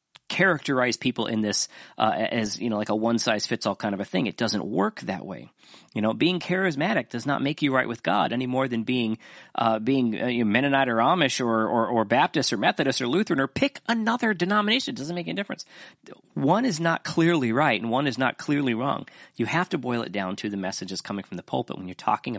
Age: 40-59